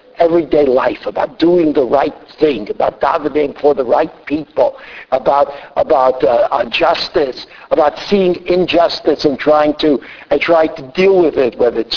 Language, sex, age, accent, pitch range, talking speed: English, male, 60-79, American, 150-195 Hz, 160 wpm